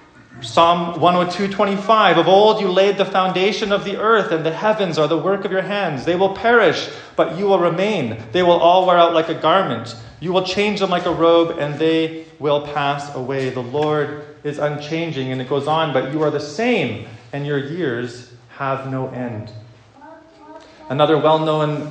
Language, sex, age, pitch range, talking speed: English, male, 30-49, 150-210 Hz, 185 wpm